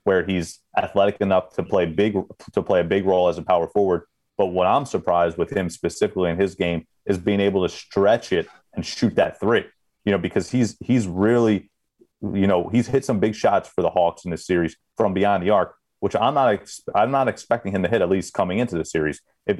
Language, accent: English, American